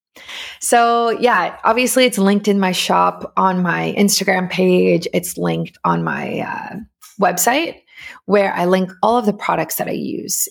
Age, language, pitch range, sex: 20-39, English, 180-215 Hz, female